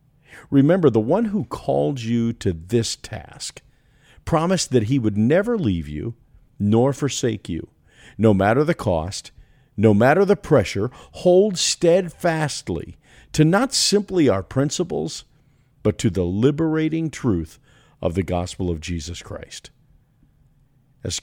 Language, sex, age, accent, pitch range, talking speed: English, male, 50-69, American, 95-135 Hz, 130 wpm